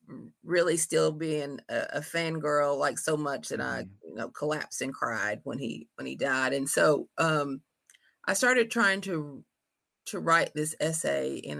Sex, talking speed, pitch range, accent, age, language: female, 170 wpm, 135-165 Hz, American, 30-49, English